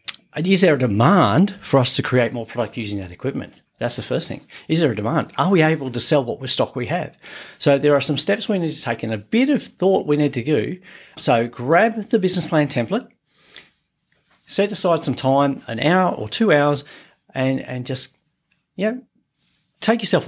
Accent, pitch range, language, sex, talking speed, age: Australian, 120-160 Hz, English, male, 210 wpm, 40-59